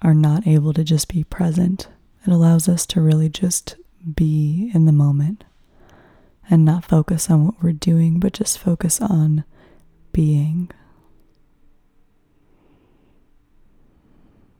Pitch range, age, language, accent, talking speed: 155-170 Hz, 20-39, English, American, 120 wpm